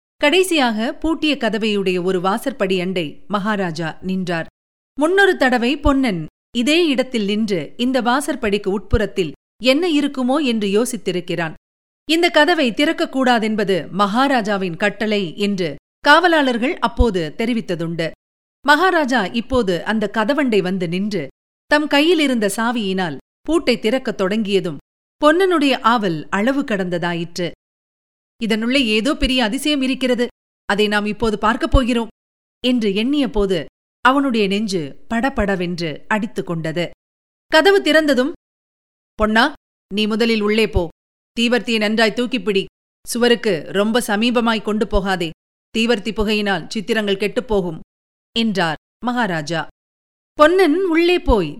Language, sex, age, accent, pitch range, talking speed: Tamil, female, 40-59, native, 195-265 Hz, 100 wpm